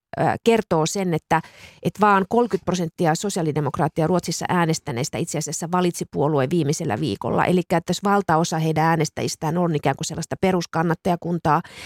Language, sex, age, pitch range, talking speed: Finnish, female, 30-49, 155-185 Hz, 130 wpm